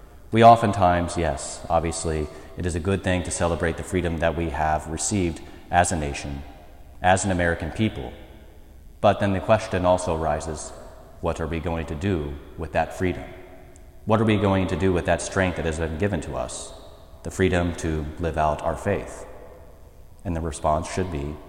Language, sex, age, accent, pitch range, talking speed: English, male, 30-49, American, 75-95 Hz, 185 wpm